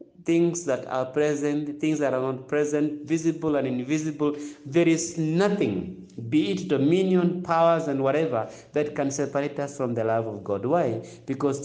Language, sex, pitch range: English, male, 120-175 Hz